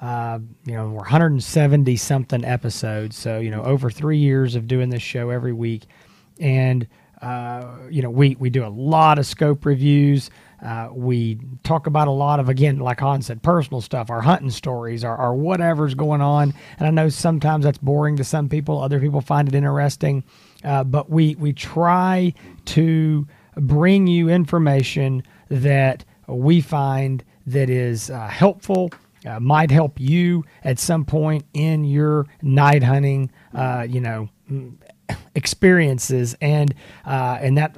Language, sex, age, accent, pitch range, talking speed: English, male, 40-59, American, 125-155 Hz, 160 wpm